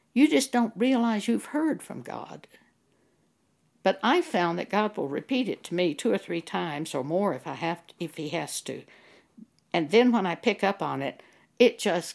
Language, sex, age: English, female, 60-79